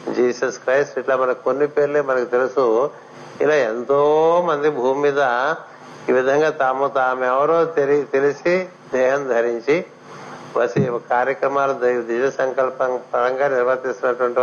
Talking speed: 80 wpm